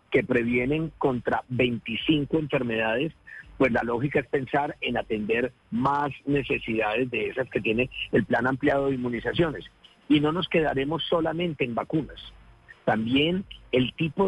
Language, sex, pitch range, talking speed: Spanish, male, 125-155 Hz, 140 wpm